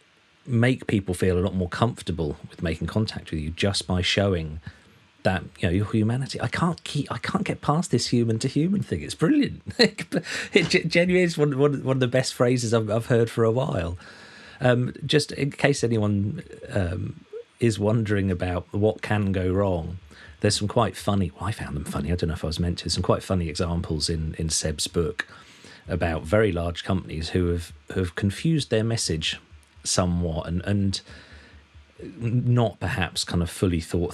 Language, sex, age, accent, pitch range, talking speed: English, male, 40-59, British, 85-115 Hz, 190 wpm